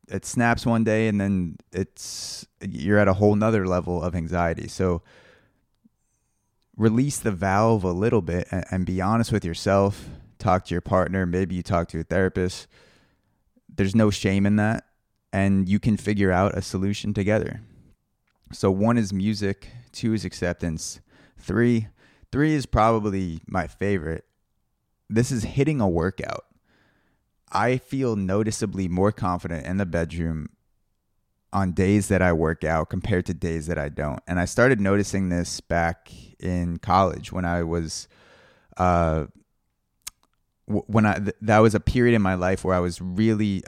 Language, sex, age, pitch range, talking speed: English, male, 20-39, 90-105 Hz, 155 wpm